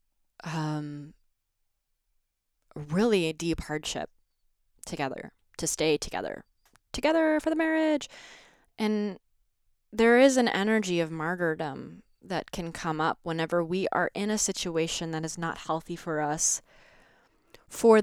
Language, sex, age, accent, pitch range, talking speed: English, female, 20-39, American, 160-195 Hz, 125 wpm